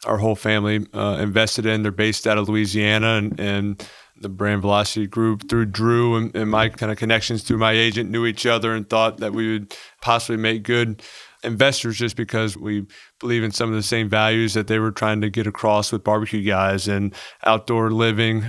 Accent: American